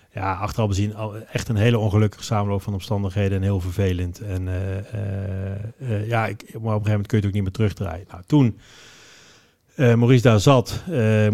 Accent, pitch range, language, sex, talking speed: Dutch, 100-120 Hz, Dutch, male, 200 wpm